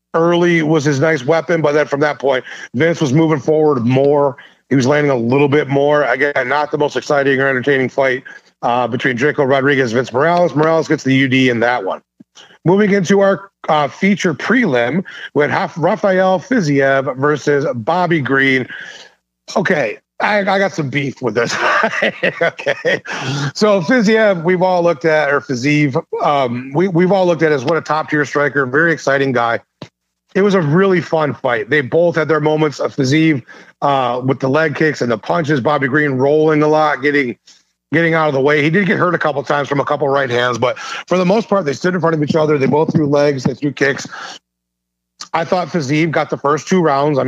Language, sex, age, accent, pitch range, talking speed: English, male, 40-59, American, 135-170 Hz, 205 wpm